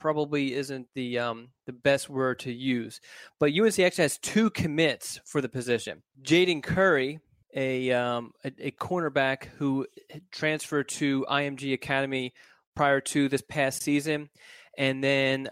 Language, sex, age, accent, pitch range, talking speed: English, male, 20-39, American, 130-150 Hz, 145 wpm